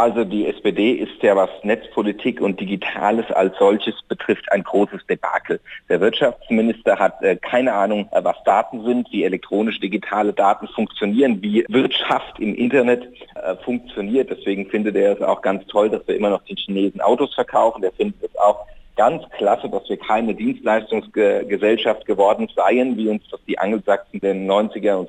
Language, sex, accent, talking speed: German, male, German, 165 wpm